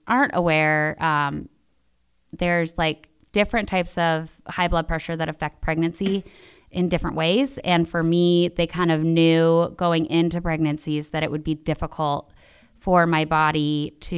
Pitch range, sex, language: 155-180 Hz, female, English